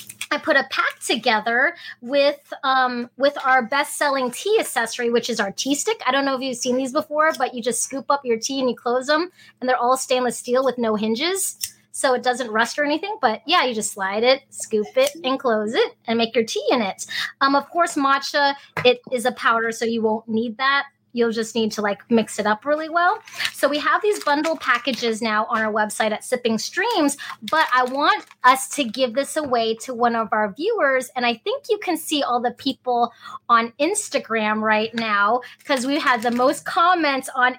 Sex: female